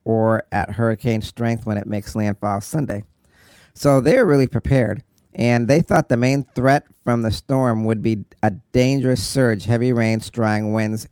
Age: 40-59